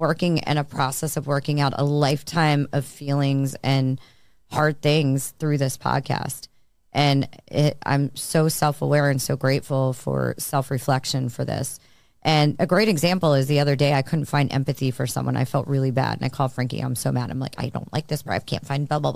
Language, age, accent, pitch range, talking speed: English, 30-49, American, 130-150 Hz, 205 wpm